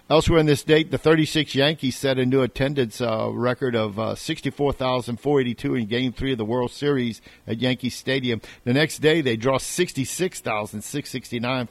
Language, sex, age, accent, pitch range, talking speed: English, male, 50-69, American, 115-145 Hz, 165 wpm